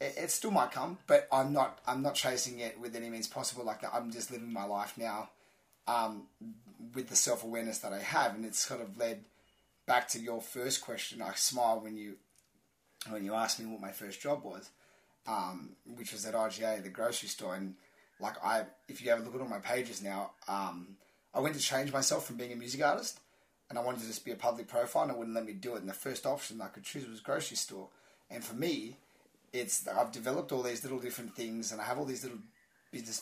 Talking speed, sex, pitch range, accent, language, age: 235 wpm, male, 110-125 Hz, Australian, English, 20-39